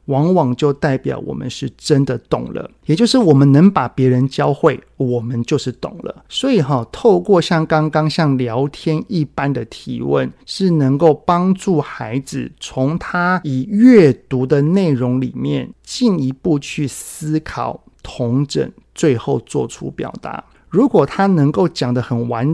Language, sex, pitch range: Chinese, male, 130-170 Hz